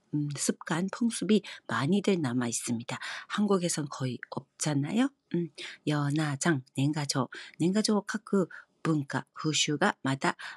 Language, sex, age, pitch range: Korean, female, 40-59, 145-195 Hz